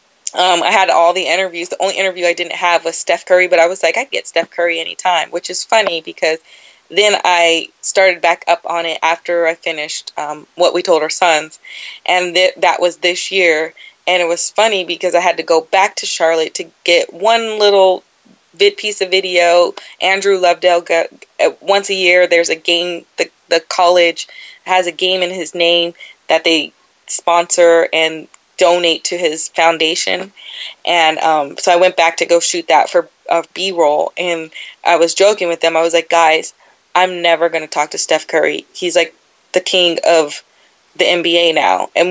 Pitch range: 170-205 Hz